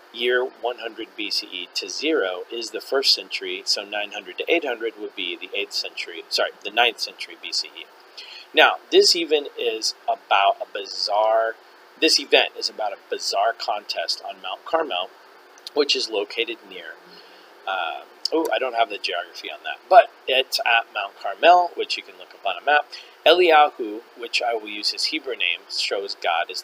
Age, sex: 40-59, male